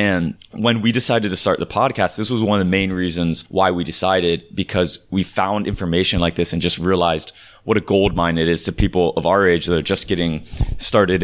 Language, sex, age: English, male, 20-39